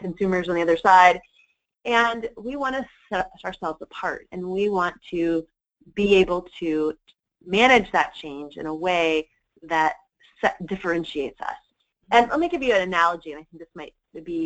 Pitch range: 170-240 Hz